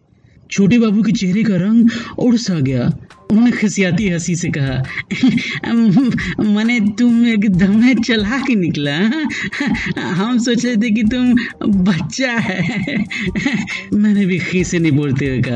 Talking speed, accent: 40 wpm, native